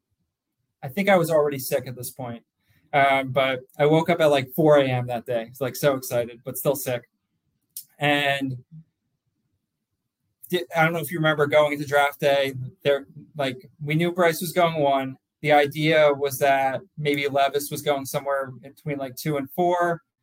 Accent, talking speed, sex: American, 180 wpm, male